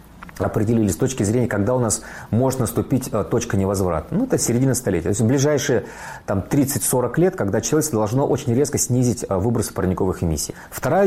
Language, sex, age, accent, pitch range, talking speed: Russian, male, 30-49, native, 100-135 Hz, 175 wpm